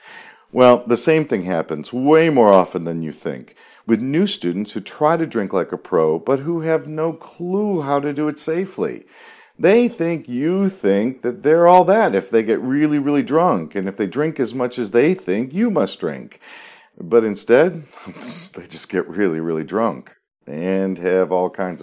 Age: 50-69